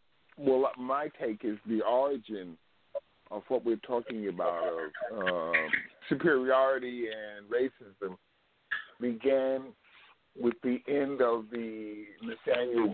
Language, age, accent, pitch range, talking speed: English, 50-69, American, 105-130 Hz, 105 wpm